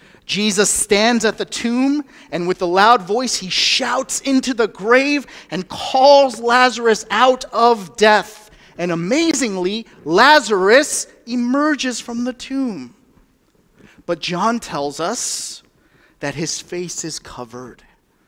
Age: 30-49